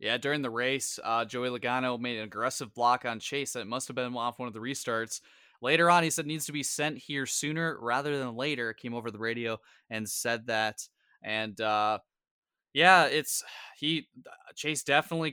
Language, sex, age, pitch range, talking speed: English, male, 20-39, 115-135 Hz, 190 wpm